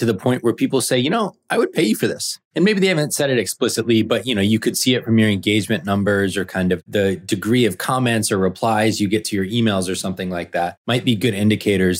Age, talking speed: 20-39, 270 wpm